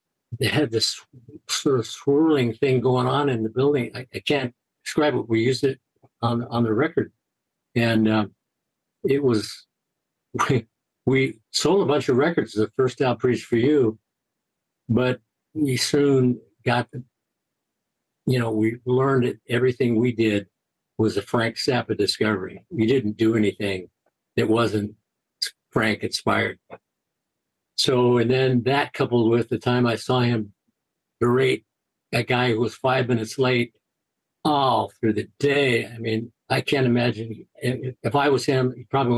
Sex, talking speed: male, 155 wpm